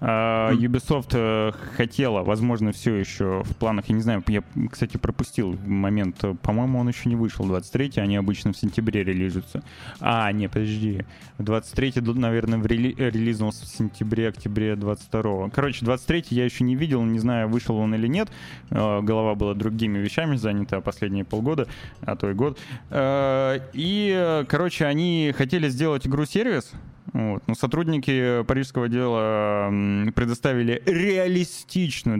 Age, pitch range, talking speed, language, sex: 20-39, 110-135 Hz, 135 wpm, Russian, male